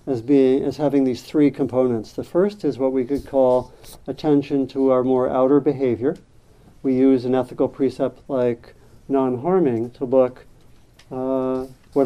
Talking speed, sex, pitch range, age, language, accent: 155 wpm, male, 120-135 Hz, 50-69, English, American